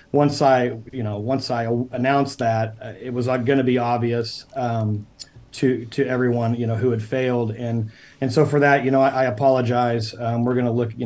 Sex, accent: male, American